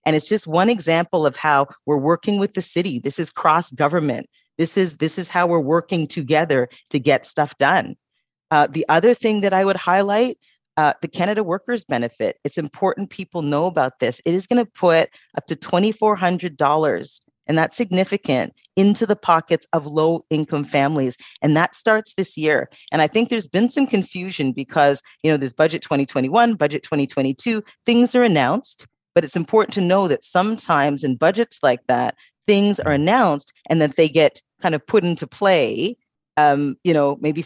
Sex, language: female, English